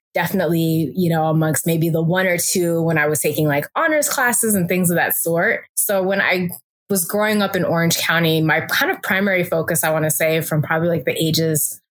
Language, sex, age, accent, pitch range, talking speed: English, female, 20-39, American, 155-190 Hz, 220 wpm